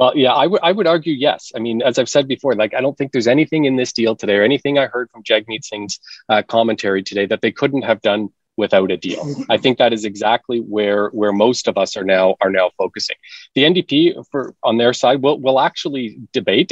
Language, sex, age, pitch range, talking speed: English, male, 30-49, 110-135 Hz, 240 wpm